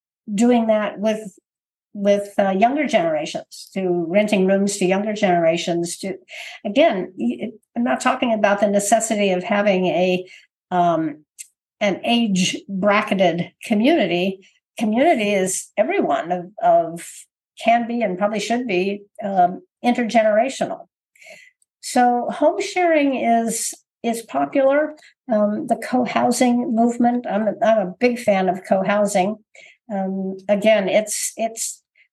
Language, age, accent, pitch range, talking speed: English, 60-79, American, 185-245 Hz, 120 wpm